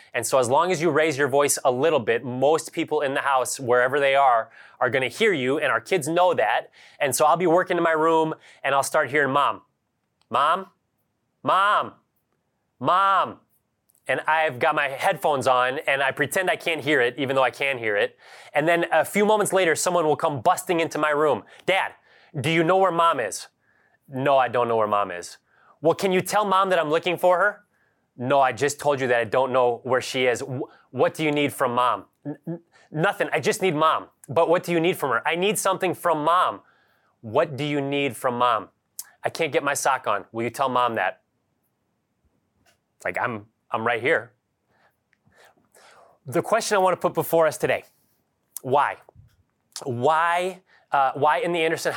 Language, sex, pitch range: English, male, 135-170 Hz